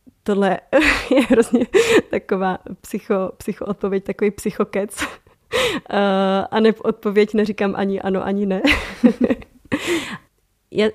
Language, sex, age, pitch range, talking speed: Czech, female, 20-39, 190-220 Hz, 100 wpm